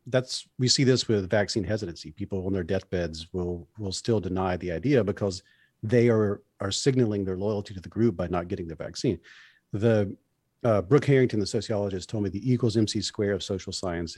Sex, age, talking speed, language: male, 40-59, 200 wpm, English